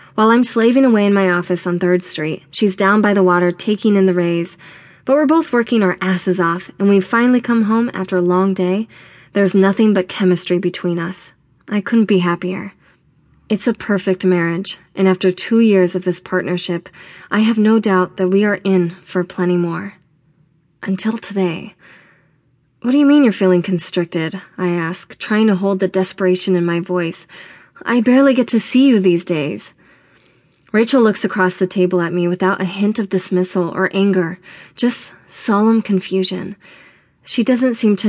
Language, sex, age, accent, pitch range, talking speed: English, female, 20-39, American, 180-215 Hz, 180 wpm